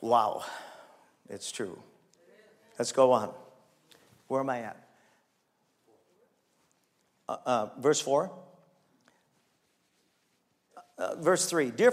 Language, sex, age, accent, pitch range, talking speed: English, male, 50-69, American, 150-200 Hz, 90 wpm